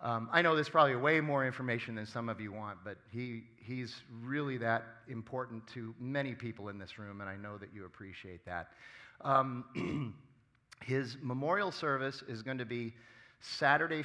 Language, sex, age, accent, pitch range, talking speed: English, male, 40-59, American, 100-130 Hz, 175 wpm